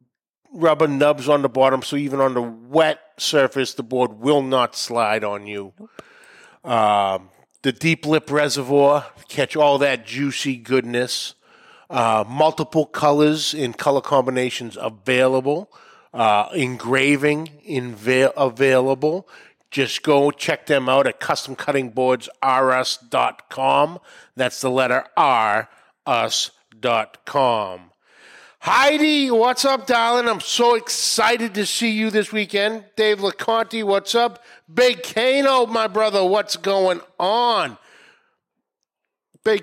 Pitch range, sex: 135-210 Hz, male